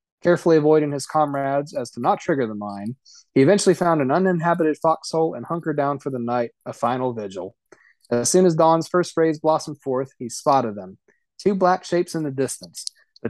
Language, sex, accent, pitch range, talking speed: English, male, American, 135-165 Hz, 195 wpm